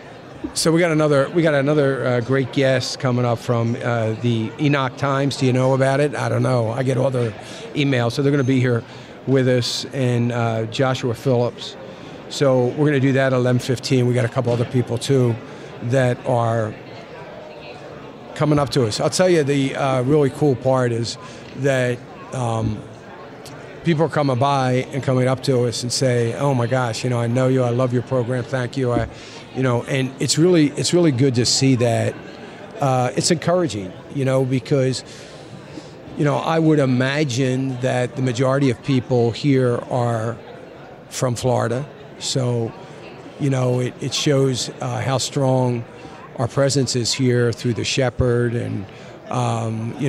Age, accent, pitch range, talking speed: 50-69, American, 120-140 Hz, 180 wpm